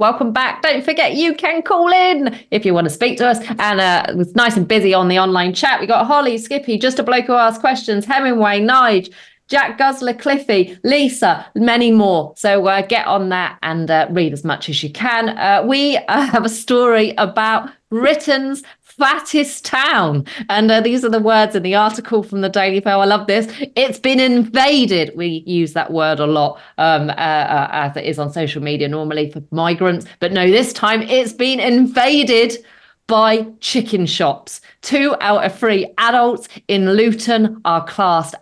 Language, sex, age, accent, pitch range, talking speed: English, female, 30-49, British, 185-255 Hz, 190 wpm